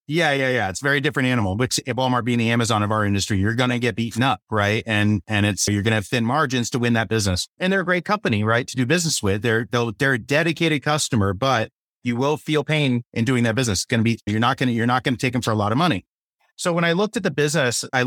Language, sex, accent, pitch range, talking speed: English, male, American, 115-140 Hz, 280 wpm